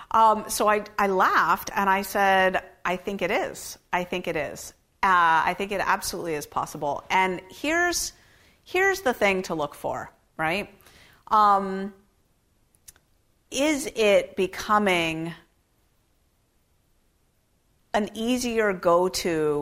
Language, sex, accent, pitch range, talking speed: English, female, American, 155-200 Hz, 120 wpm